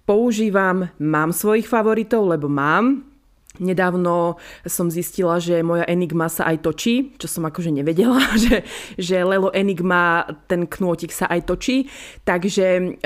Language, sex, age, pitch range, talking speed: Slovak, female, 20-39, 170-195 Hz, 135 wpm